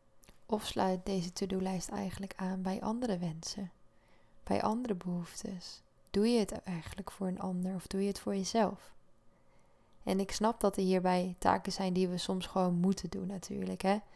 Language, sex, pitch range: Dutch, female, 185-210 Hz